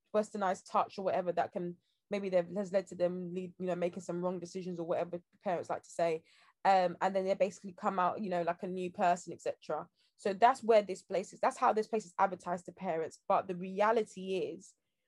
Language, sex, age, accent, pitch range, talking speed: English, female, 20-39, British, 175-200 Hz, 225 wpm